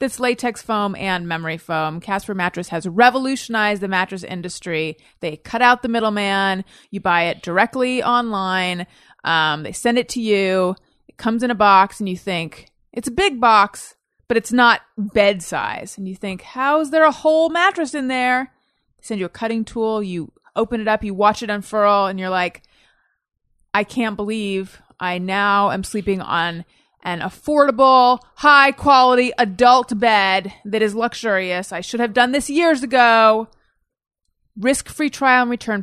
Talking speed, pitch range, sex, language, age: 170 wpm, 185-245 Hz, female, English, 30-49